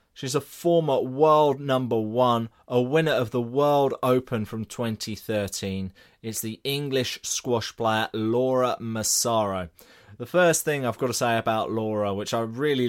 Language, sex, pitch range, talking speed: English, male, 105-125 Hz, 155 wpm